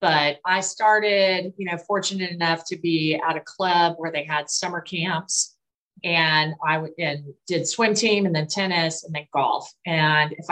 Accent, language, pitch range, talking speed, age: American, English, 155-190 Hz, 170 wpm, 30-49